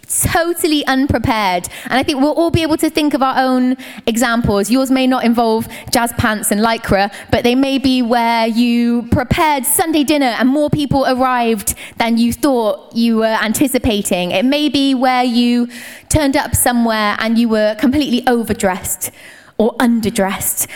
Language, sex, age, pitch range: English, female, 20-39, 225-275 Hz